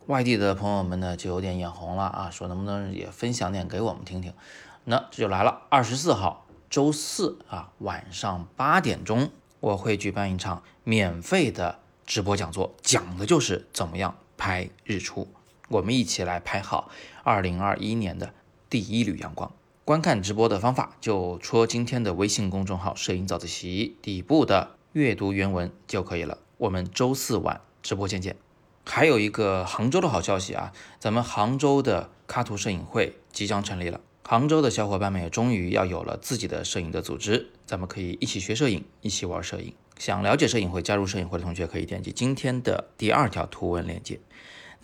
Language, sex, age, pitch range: Chinese, male, 20-39, 90-110 Hz